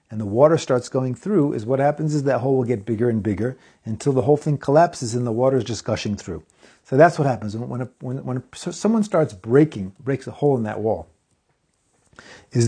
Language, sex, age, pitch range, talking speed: English, male, 40-59, 115-150 Hz, 235 wpm